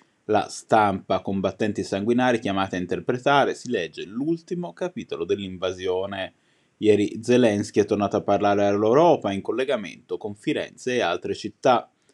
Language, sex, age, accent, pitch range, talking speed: Italian, male, 20-39, native, 100-145 Hz, 130 wpm